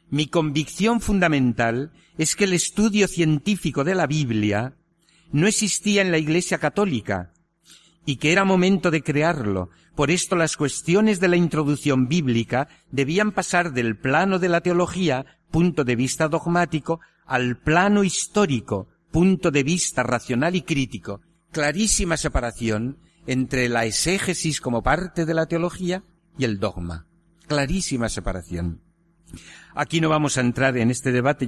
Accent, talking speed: Spanish, 140 wpm